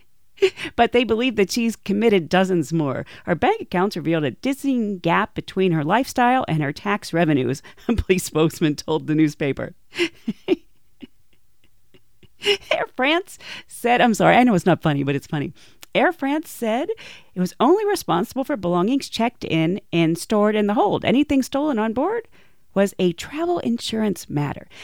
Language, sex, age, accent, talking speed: English, female, 40-59, American, 160 wpm